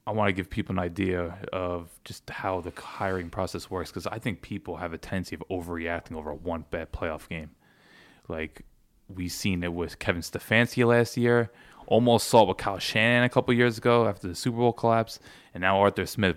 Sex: male